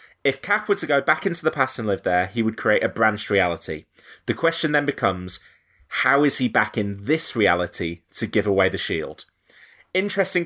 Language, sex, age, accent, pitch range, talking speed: English, male, 30-49, British, 95-125 Hz, 200 wpm